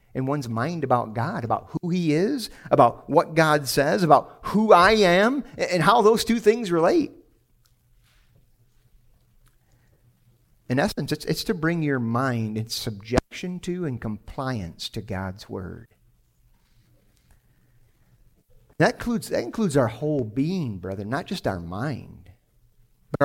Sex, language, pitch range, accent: male, English, 120-170 Hz, American